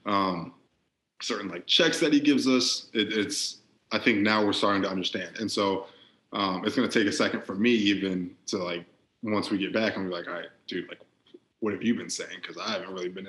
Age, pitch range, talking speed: 20-39, 95-110 Hz, 225 wpm